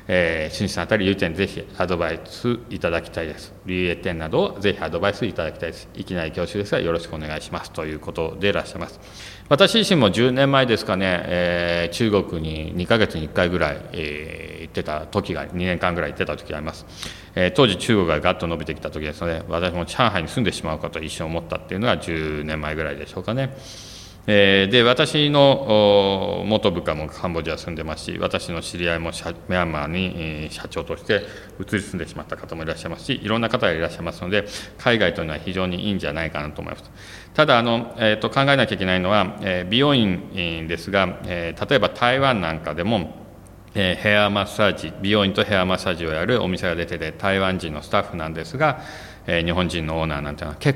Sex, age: male, 40-59